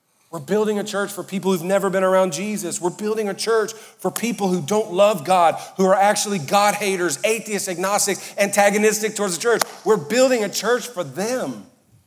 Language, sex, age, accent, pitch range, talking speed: English, male, 40-59, American, 150-210 Hz, 190 wpm